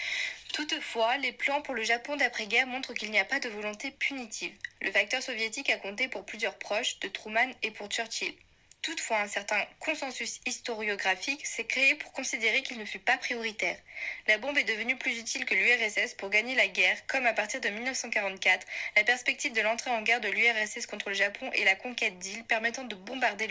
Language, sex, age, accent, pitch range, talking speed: French, female, 20-39, French, 205-255 Hz, 195 wpm